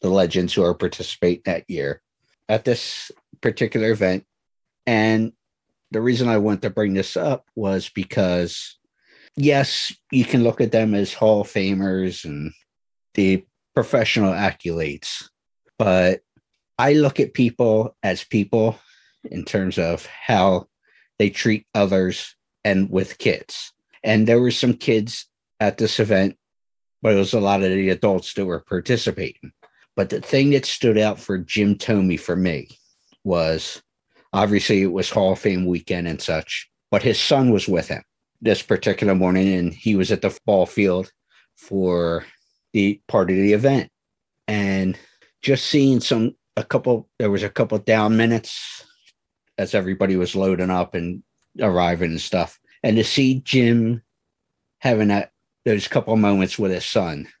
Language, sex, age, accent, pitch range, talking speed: English, male, 50-69, American, 95-115 Hz, 155 wpm